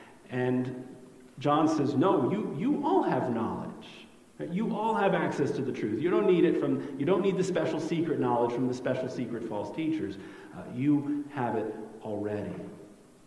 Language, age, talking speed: English, 50-69, 175 wpm